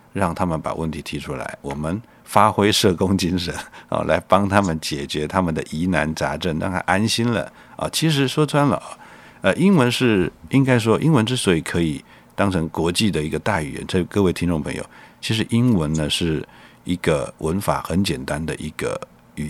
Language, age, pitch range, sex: Chinese, 50-69, 80-110 Hz, male